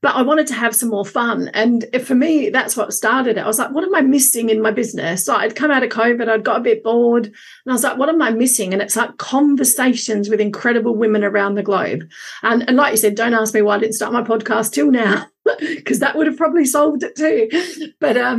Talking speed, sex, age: 260 wpm, female, 40-59